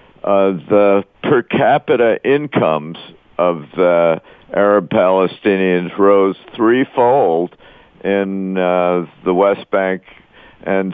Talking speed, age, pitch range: 100 wpm, 50-69, 90-110 Hz